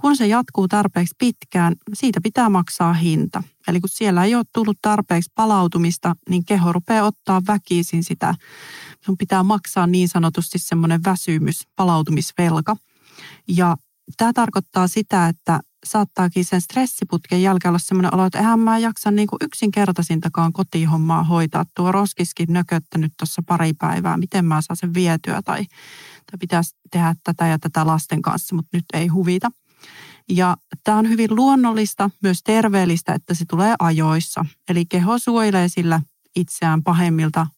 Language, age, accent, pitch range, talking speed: English, 30-49, Finnish, 170-205 Hz, 145 wpm